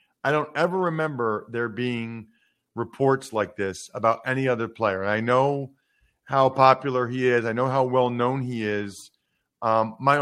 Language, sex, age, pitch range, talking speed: English, male, 40-59, 115-155 Hz, 160 wpm